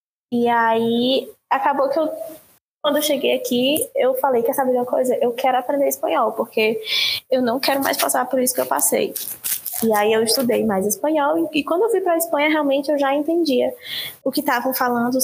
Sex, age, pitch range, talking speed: female, 10-29, 235-300 Hz, 210 wpm